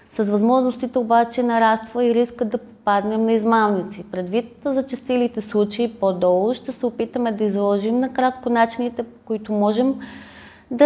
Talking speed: 150 wpm